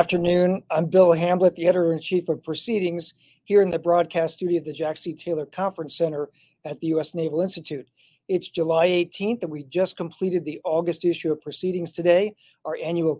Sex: male